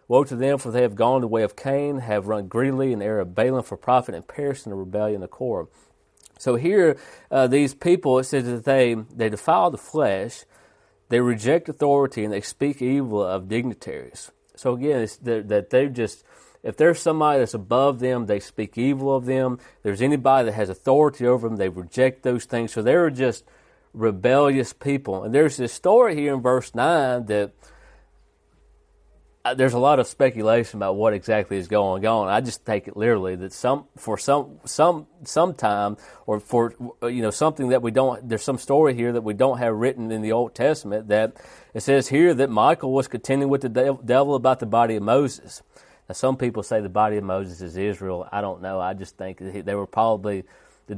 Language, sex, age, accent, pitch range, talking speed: English, male, 40-59, American, 105-135 Hz, 205 wpm